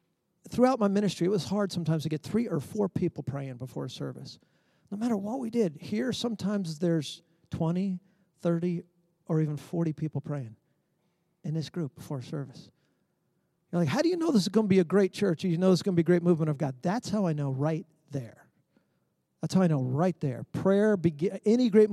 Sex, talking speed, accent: male, 220 wpm, American